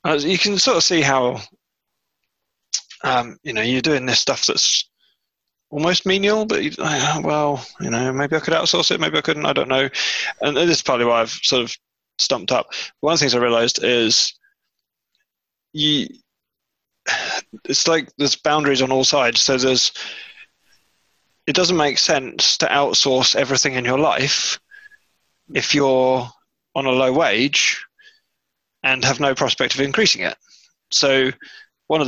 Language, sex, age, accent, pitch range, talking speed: English, male, 20-39, British, 125-155 Hz, 165 wpm